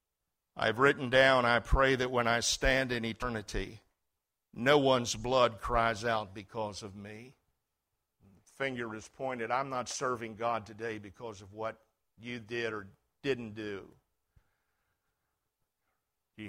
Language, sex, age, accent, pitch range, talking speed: English, male, 50-69, American, 110-135 Hz, 130 wpm